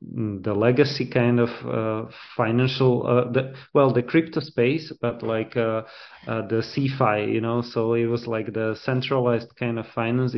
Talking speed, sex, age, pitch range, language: 170 wpm, male, 20-39, 105-125 Hz, English